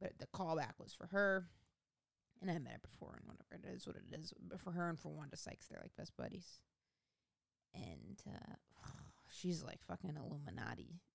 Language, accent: English, American